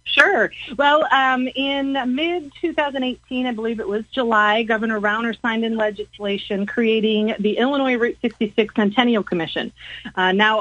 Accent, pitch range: American, 210-260 Hz